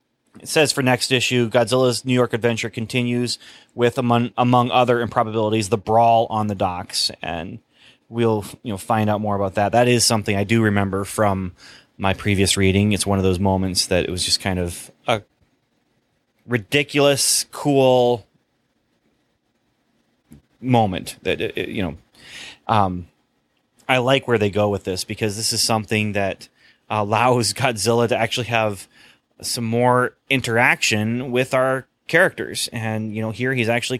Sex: male